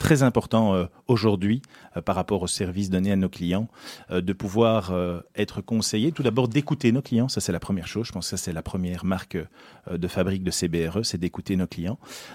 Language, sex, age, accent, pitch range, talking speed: French, male, 40-59, French, 95-125 Hz, 200 wpm